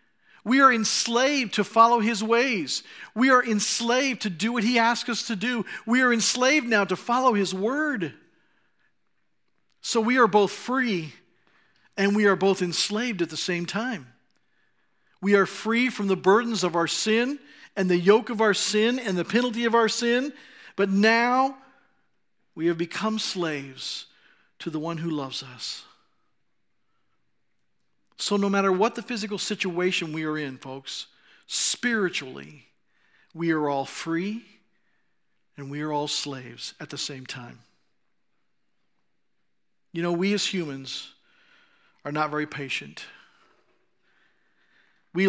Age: 50-69